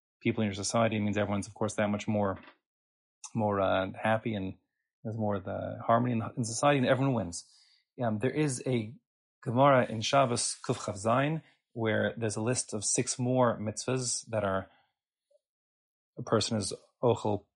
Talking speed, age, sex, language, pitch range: 170 wpm, 30-49, male, English, 100-125 Hz